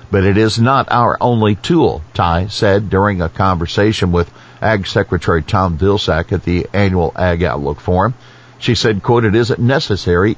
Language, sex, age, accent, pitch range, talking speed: English, male, 60-79, American, 90-115 Hz, 170 wpm